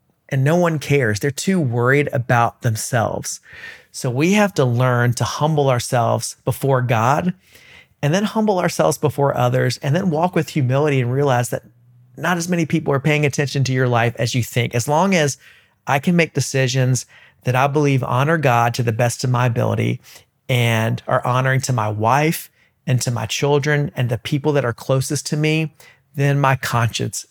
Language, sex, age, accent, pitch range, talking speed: English, male, 40-59, American, 120-145 Hz, 185 wpm